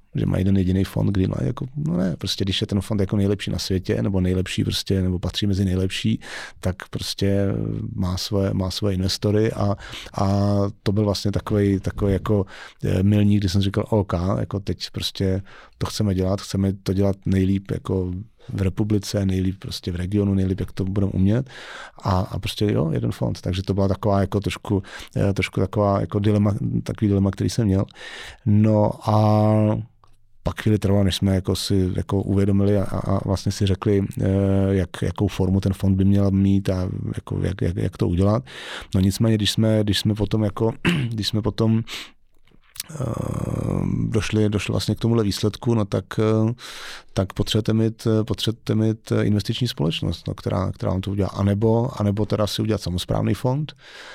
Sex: male